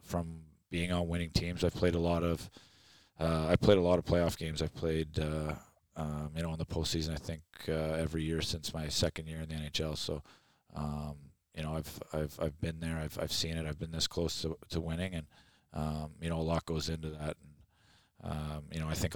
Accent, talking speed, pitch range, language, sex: American, 230 wpm, 80-85 Hz, English, male